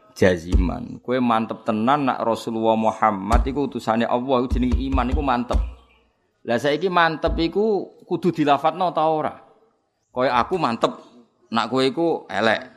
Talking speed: 135 wpm